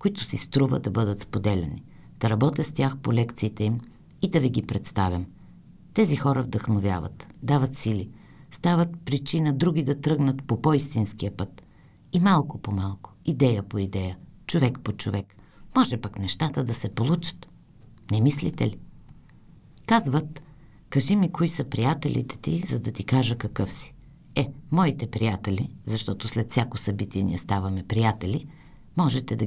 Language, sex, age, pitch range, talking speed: Bulgarian, female, 50-69, 100-145 Hz, 150 wpm